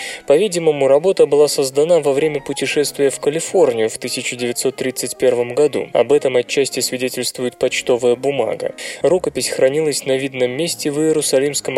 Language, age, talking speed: Russian, 20-39, 125 wpm